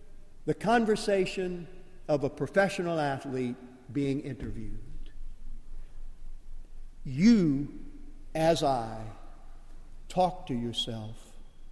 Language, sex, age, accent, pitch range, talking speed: English, male, 50-69, American, 140-215 Hz, 70 wpm